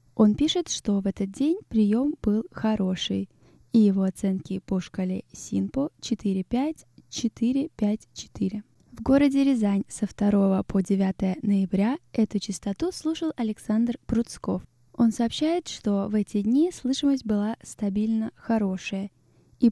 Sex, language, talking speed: female, Russian, 125 wpm